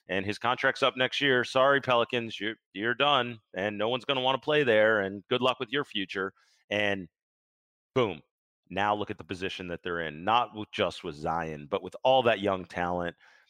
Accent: American